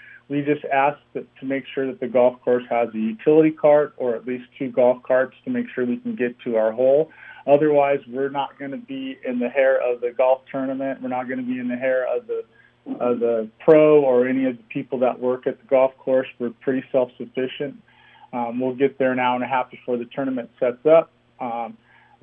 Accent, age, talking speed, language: American, 40-59, 230 wpm, English